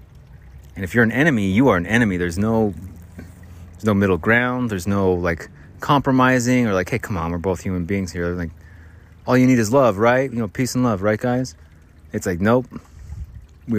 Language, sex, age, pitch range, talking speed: English, male, 30-49, 85-115 Hz, 210 wpm